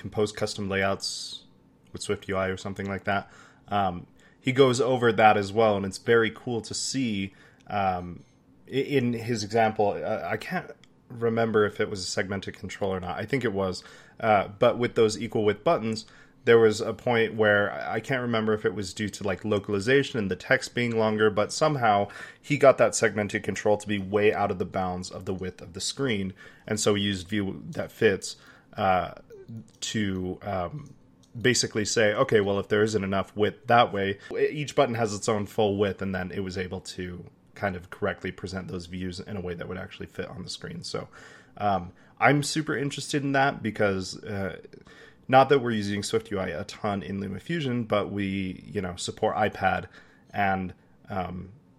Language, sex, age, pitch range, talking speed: English, male, 30-49, 95-115 Hz, 190 wpm